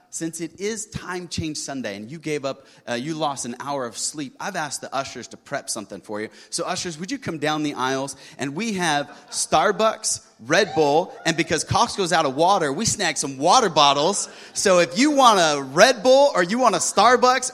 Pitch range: 165-220 Hz